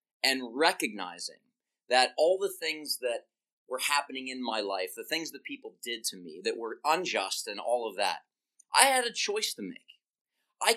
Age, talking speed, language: 30-49, 185 wpm, English